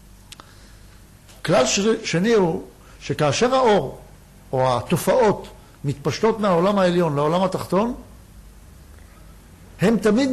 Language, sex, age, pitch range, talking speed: Hebrew, male, 60-79, 155-225 Hz, 85 wpm